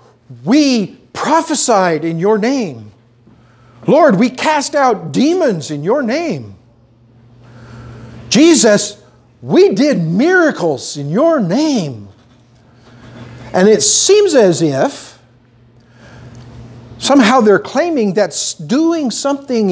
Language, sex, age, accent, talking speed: English, male, 50-69, American, 95 wpm